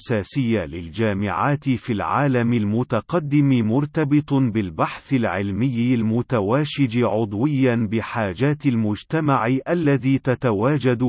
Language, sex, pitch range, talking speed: Arabic, male, 110-140 Hz, 70 wpm